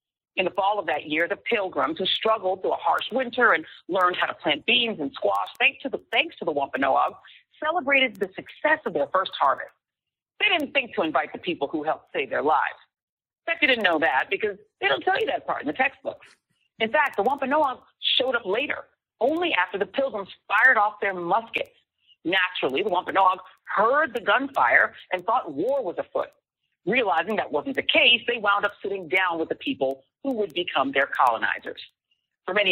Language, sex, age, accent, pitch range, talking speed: English, female, 40-59, American, 180-275 Hz, 200 wpm